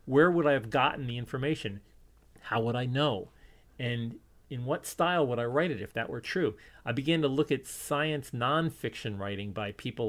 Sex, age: male, 40-59